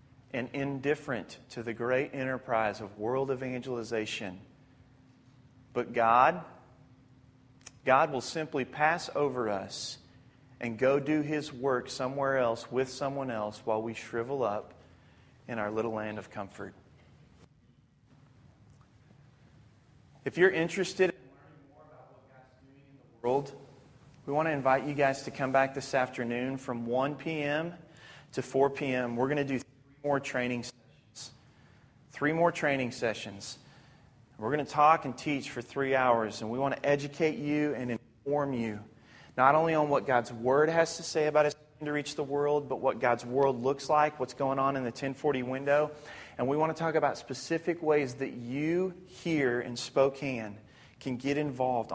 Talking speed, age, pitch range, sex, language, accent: 160 wpm, 30-49, 120-145 Hz, male, English, American